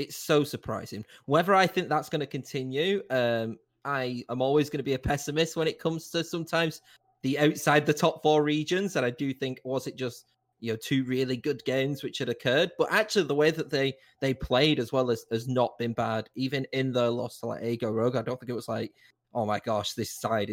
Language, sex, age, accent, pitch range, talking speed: English, male, 20-39, British, 125-155 Hz, 235 wpm